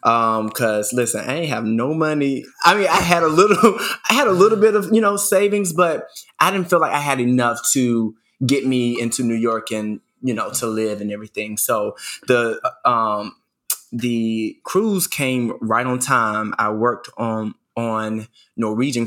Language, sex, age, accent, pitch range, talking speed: English, male, 20-39, American, 110-140 Hz, 185 wpm